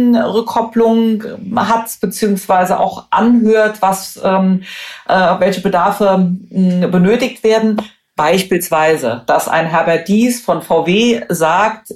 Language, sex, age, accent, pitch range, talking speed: German, female, 50-69, German, 190-215 Hz, 100 wpm